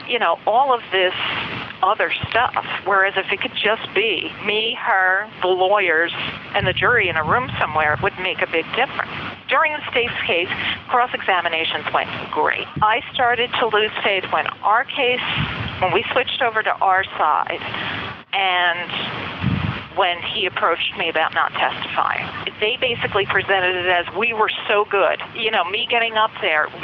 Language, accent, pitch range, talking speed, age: English, American, 170-210 Hz, 170 wpm, 50-69